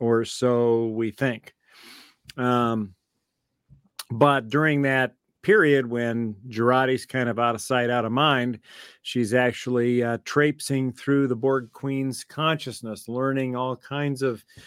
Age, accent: 50-69, American